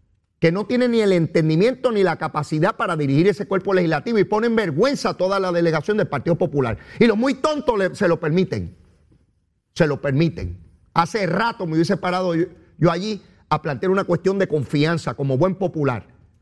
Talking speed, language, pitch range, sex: 190 wpm, Spanish, 155-245 Hz, male